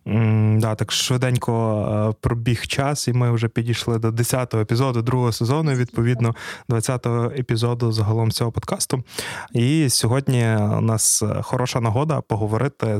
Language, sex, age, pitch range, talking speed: Ukrainian, male, 20-39, 110-130 Hz, 135 wpm